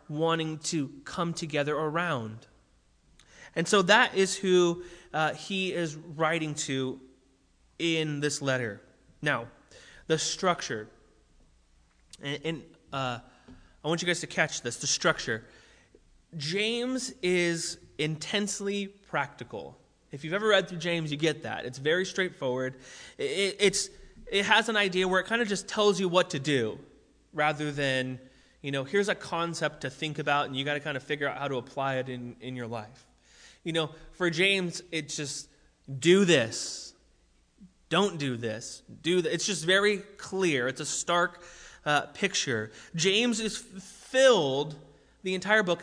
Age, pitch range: 20-39, 140-190 Hz